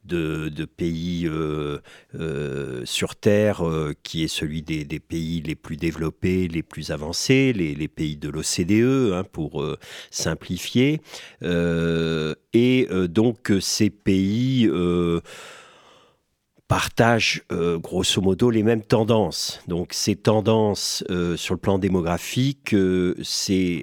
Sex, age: male, 50-69